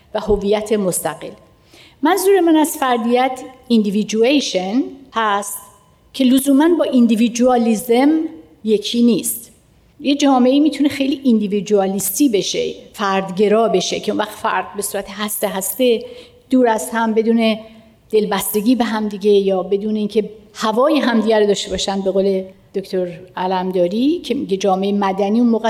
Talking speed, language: 135 wpm, Persian